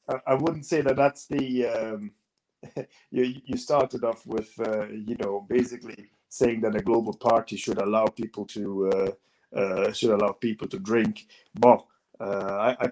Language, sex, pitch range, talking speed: English, male, 105-130 Hz, 165 wpm